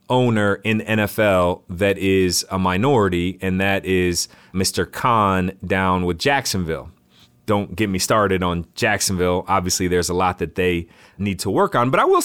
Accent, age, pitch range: American, 30-49, 100-125 Hz